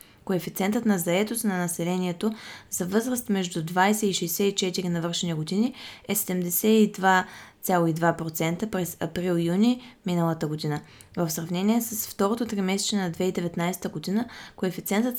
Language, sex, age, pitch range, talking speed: Bulgarian, female, 20-39, 180-220 Hz, 110 wpm